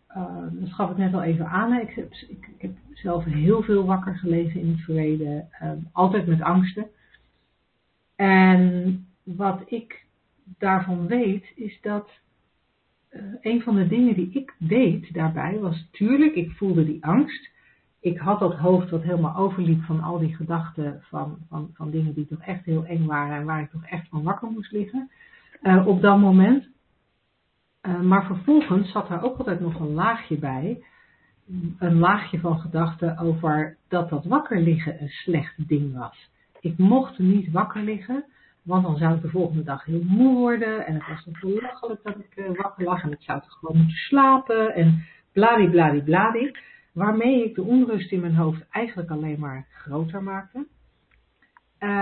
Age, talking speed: 60-79, 175 wpm